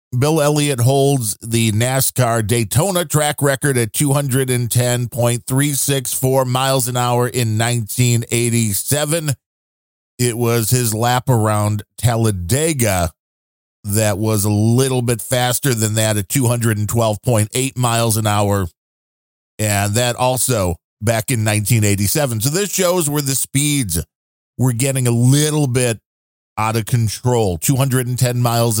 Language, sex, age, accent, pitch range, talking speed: English, male, 40-59, American, 110-135 Hz, 115 wpm